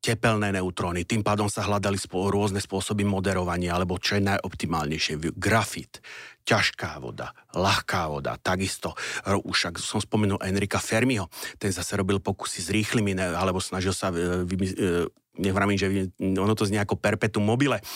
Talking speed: 135 wpm